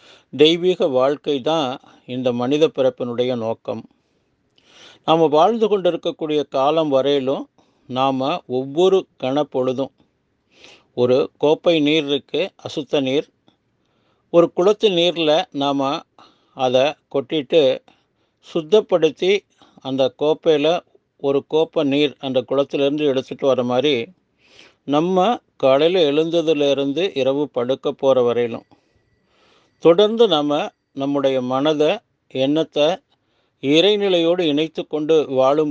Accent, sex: native, male